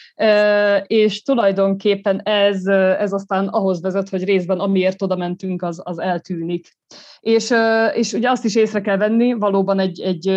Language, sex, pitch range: Hungarian, female, 180-210 Hz